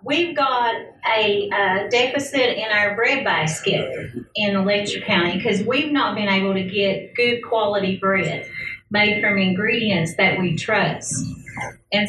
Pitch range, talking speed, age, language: 190-230 Hz, 145 wpm, 40-59, English